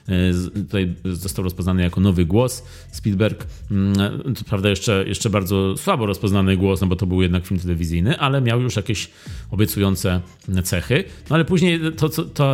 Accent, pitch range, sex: native, 100-130 Hz, male